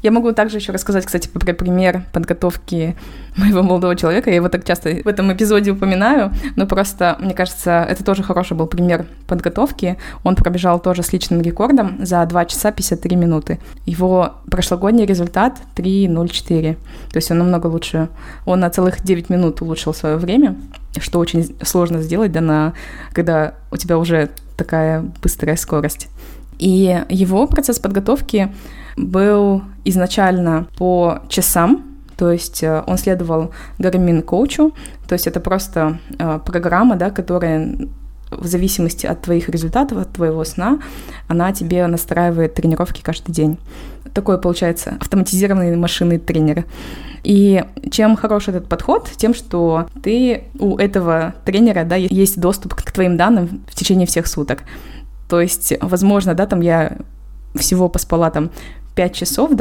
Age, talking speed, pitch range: 20-39, 135 wpm, 170-195 Hz